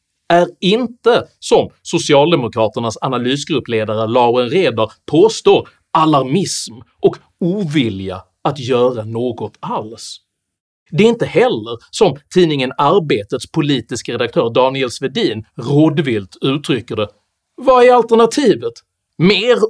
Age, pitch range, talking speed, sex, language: 40-59, 110-175 Hz, 100 wpm, male, Swedish